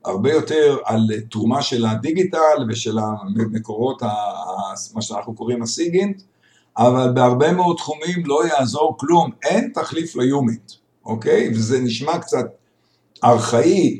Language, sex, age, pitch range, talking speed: Hebrew, male, 60-79, 115-160 Hz, 115 wpm